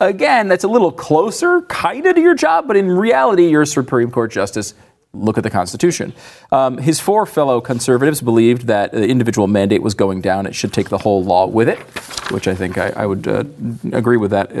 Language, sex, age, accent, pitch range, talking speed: English, male, 40-59, American, 120-170 Hz, 220 wpm